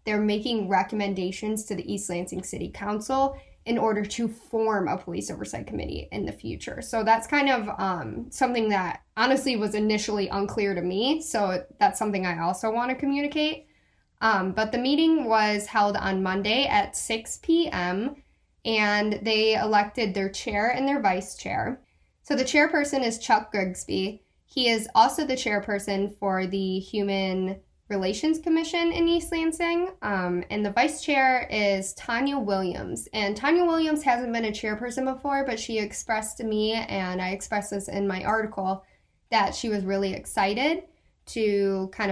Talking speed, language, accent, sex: 165 wpm, English, American, female